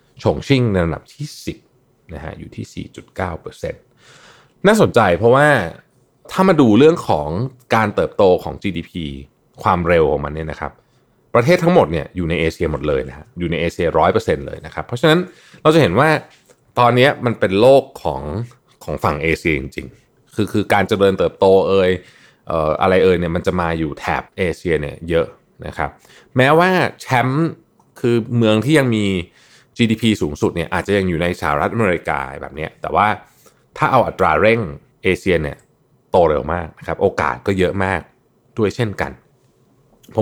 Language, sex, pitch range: Thai, male, 90-140 Hz